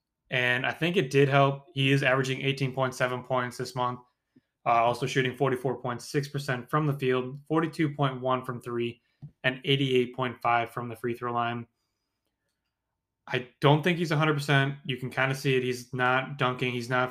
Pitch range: 120-140 Hz